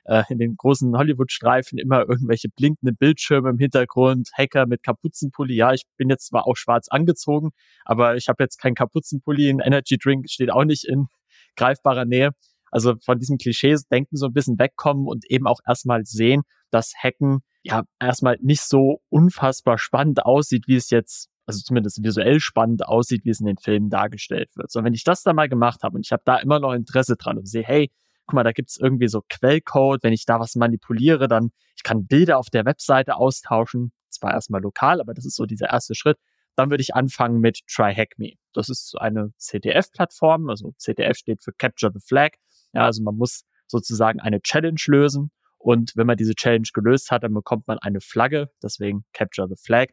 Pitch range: 115-140 Hz